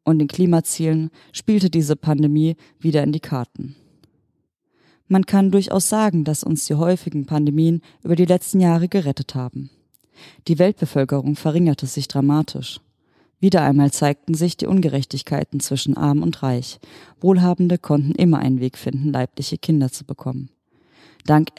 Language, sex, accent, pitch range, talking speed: German, female, German, 135-165 Hz, 140 wpm